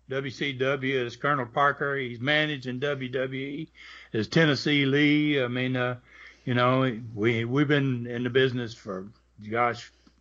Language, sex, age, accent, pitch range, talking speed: English, male, 60-79, American, 120-145 Hz, 155 wpm